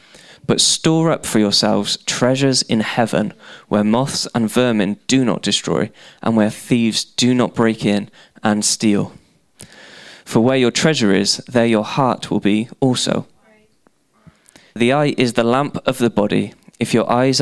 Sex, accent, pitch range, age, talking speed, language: male, British, 110-135 Hz, 20-39, 160 wpm, English